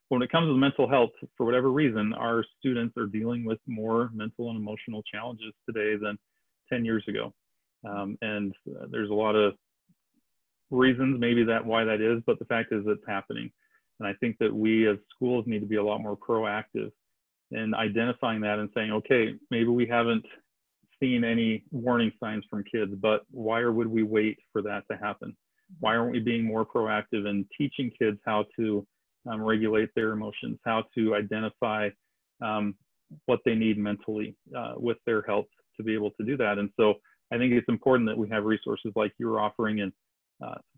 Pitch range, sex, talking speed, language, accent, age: 105-120 Hz, male, 190 wpm, English, American, 40-59